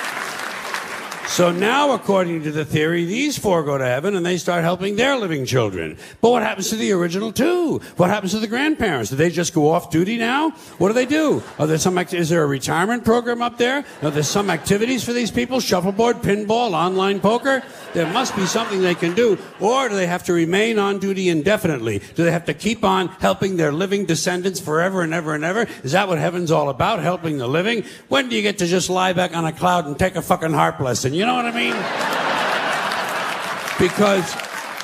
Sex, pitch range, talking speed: male, 165-220 Hz, 215 wpm